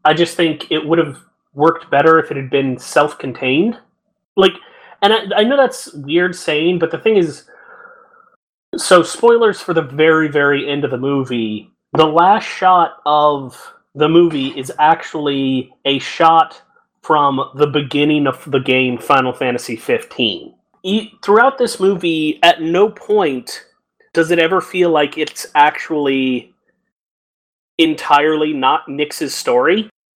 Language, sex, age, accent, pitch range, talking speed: English, male, 30-49, American, 140-195 Hz, 140 wpm